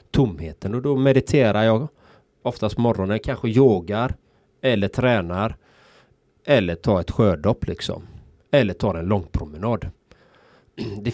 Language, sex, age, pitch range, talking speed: Swedish, male, 30-49, 95-120 Hz, 125 wpm